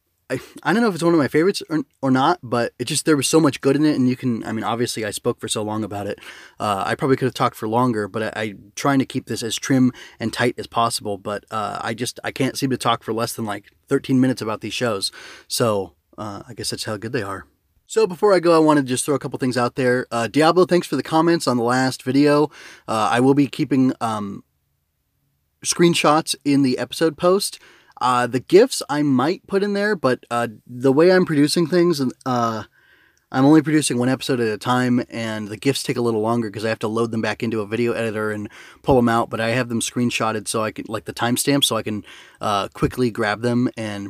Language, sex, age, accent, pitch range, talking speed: English, male, 20-39, American, 110-140 Hz, 255 wpm